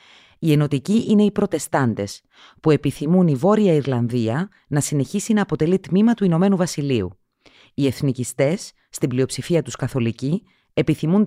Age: 30-49